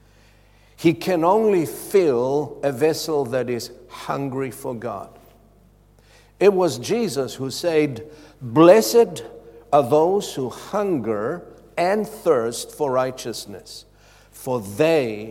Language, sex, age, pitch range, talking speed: English, male, 60-79, 115-165 Hz, 105 wpm